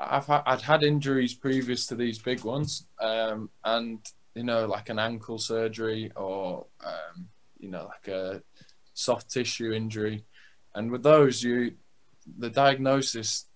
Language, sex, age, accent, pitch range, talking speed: English, male, 20-39, British, 105-125 Hz, 135 wpm